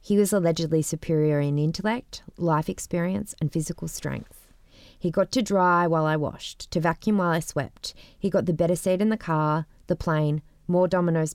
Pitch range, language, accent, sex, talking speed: 155-195 Hz, English, Australian, female, 185 wpm